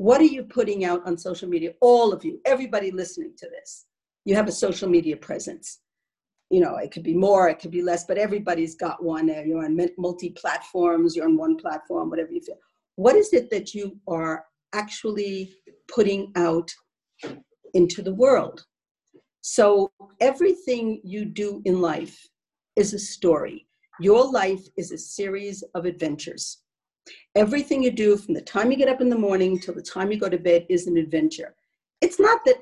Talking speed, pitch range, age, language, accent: 180 wpm, 175-250 Hz, 50-69, English, American